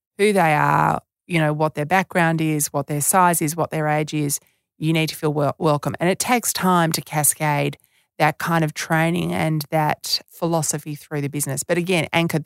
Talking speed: 195 wpm